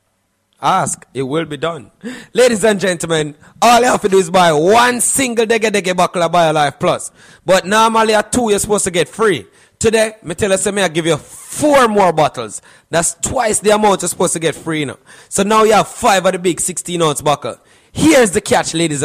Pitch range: 150-205 Hz